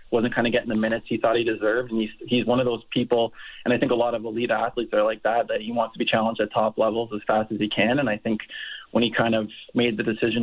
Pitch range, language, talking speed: 115-125 Hz, English, 300 wpm